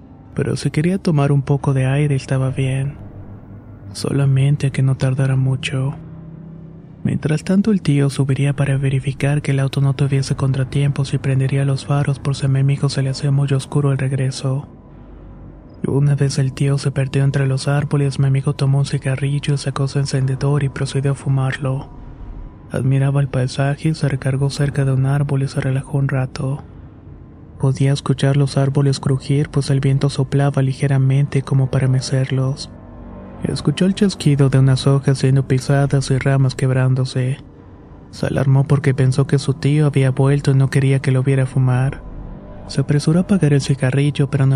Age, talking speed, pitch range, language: 20-39, 175 wpm, 135-140 Hz, Spanish